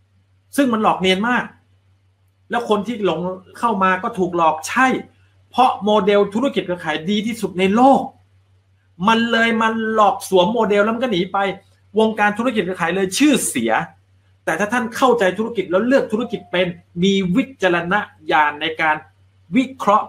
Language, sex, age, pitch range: Thai, male, 30-49, 145-210 Hz